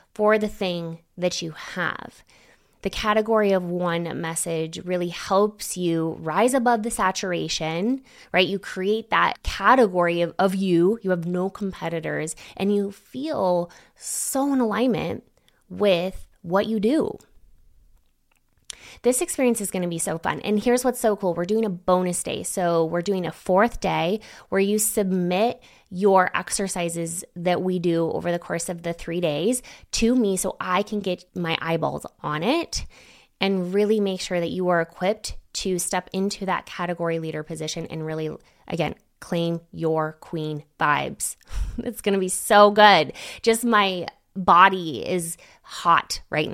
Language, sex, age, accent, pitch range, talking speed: English, female, 20-39, American, 170-205 Hz, 160 wpm